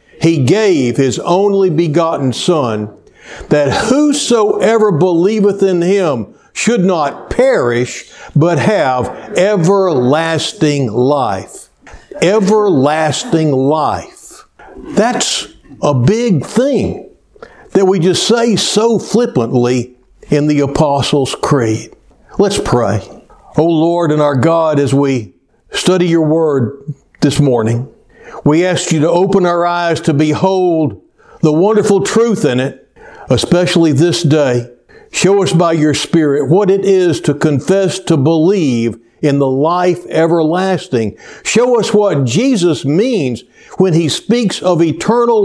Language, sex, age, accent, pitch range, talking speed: English, male, 60-79, American, 140-190 Hz, 120 wpm